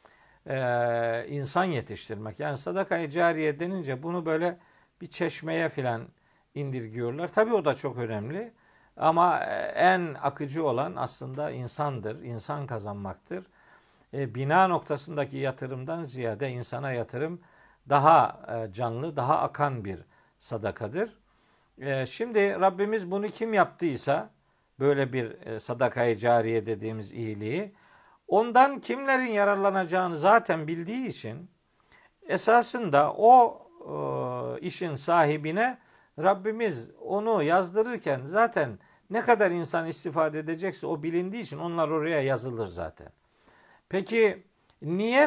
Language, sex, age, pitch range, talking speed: Turkish, male, 50-69, 130-190 Hz, 105 wpm